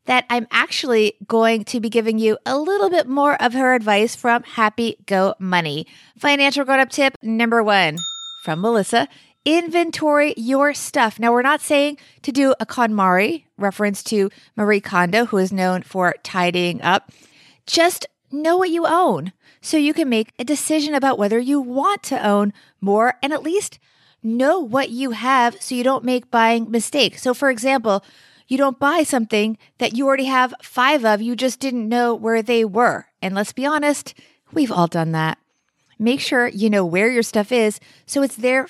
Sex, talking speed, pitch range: female, 180 wpm, 215-275 Hz